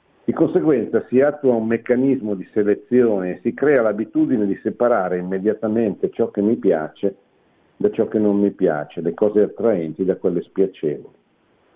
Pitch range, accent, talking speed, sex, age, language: 95-125 Hz, native, 160 wpm, male, 50-69, Italian